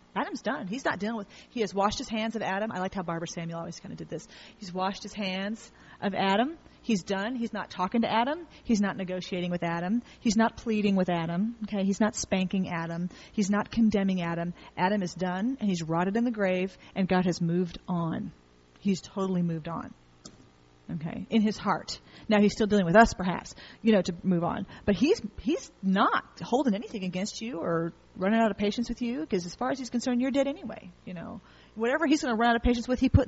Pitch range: 180-225 Hz